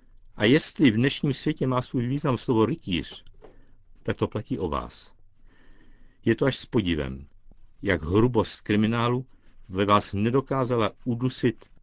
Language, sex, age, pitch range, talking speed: Czech, male, 60-79, 100-130 Hz, 135 wpm